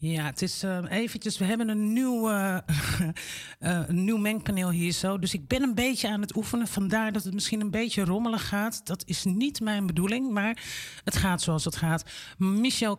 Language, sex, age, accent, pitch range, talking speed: Dutch, male, 50-69, Dutch, 170-210 Hz, 190 wpm